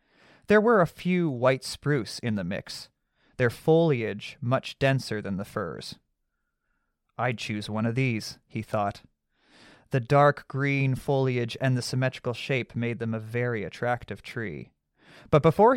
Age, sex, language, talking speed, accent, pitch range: 30-49, male, English, 150 wpm, American, 115-155 Hz